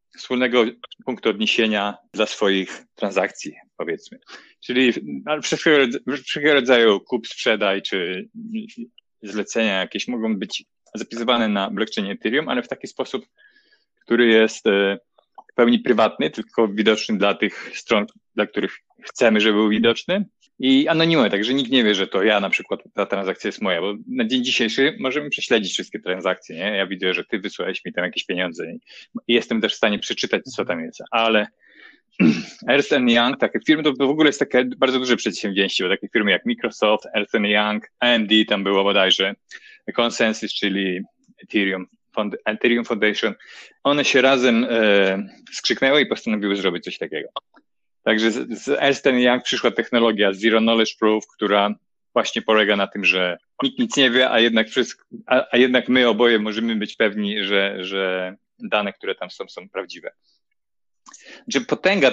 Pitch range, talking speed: 105-135 Hz, 160 wpm